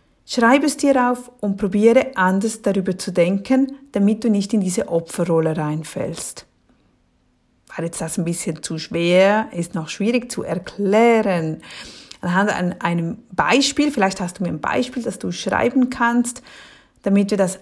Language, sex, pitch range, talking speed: German, female, 170-245 Hz, 155 wpm